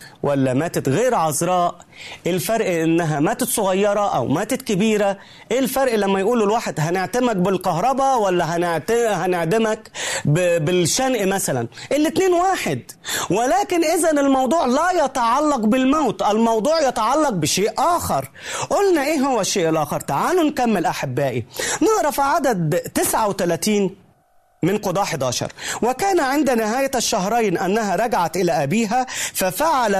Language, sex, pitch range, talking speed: Arabic, male, 165-265 Hz, 115 wpm